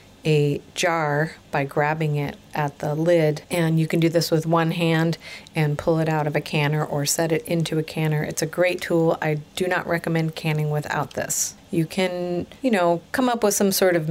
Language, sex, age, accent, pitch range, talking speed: English, female, 40-59, American, 150-175 Hz, 215 wpm